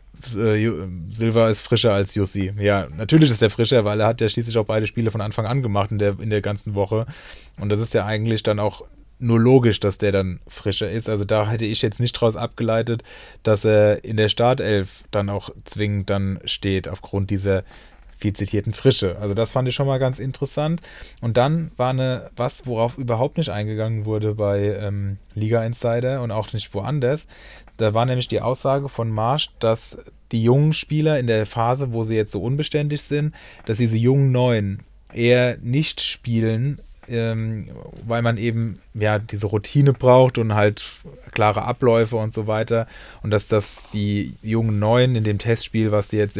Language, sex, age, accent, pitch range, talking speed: German, male, 20-39, German, 105-120 Hz, 185 wpm